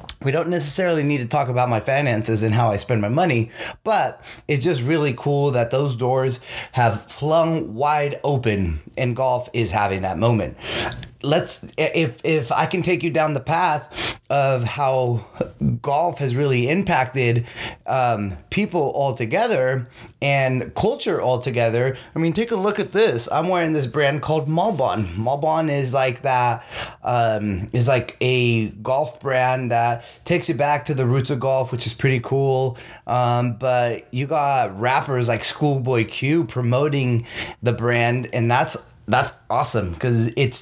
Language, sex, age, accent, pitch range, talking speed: English, male, 30-49, American, 120-150 Hz, 160 wpm